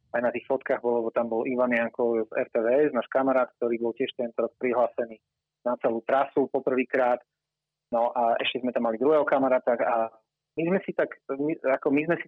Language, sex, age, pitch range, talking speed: Slovak, male, 30-49, 120-145 Hz, 195 wpm